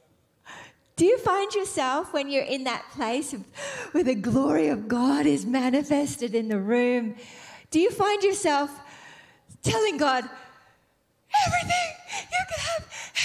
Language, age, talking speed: English, 40-59, 130 wpm